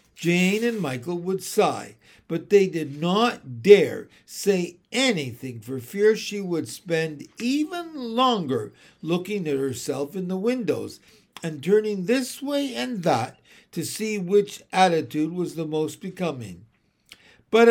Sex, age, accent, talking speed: male, 60-79, American, 135 wpm